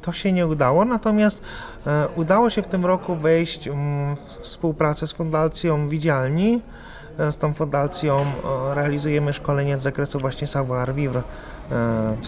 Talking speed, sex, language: 135 wpm, male, Polish